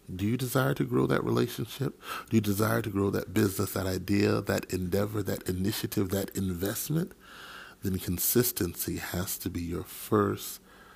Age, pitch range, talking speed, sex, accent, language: 40-59, 85-105 Hz, 160 wpm, male, American, English